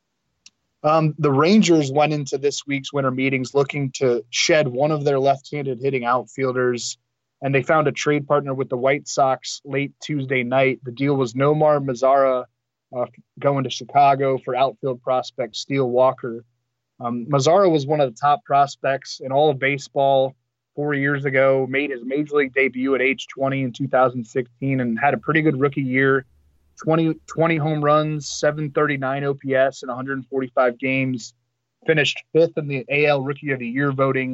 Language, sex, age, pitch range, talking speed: English, male, 20-39, 130-145 Hz, 165 wpm